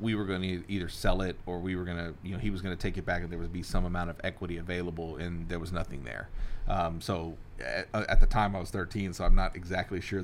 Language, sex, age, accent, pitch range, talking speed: English, male, 30-49, American, 90-100 Hz, 285 wpm